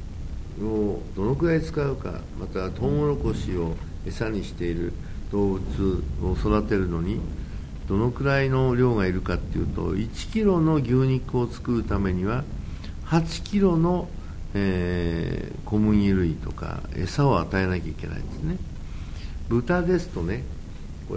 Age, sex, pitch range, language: 60-79, male, 80-130 Hz, Japanese